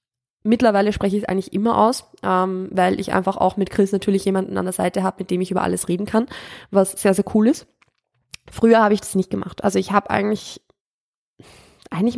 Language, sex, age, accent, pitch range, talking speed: German, female, 20-39, German, 185-210 Hz, 205 wpm